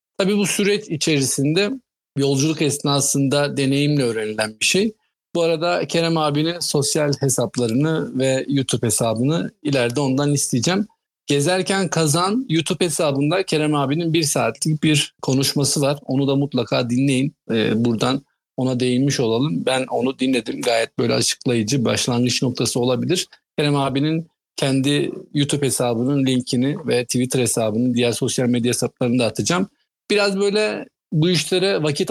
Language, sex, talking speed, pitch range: Turkish, male, 130 wpm, 125-165 Hz